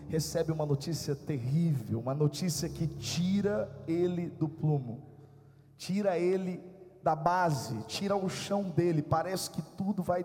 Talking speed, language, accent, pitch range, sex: 135 wpm, Portuguese, Brazilian, 150-195 Hz, male